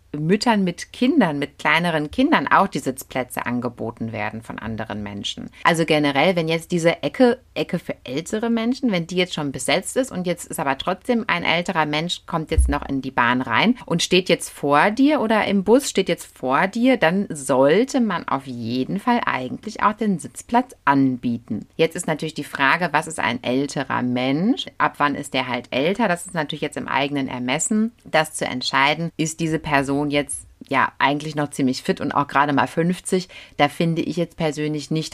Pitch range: 135-185 Hz